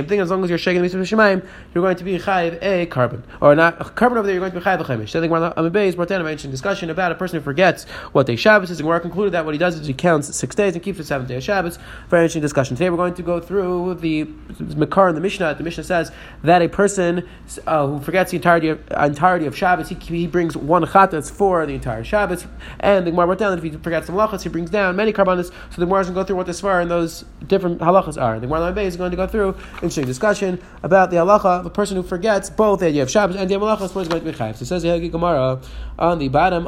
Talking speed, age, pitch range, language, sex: 275 wpm, 30-49, 150-190 Hz, English, male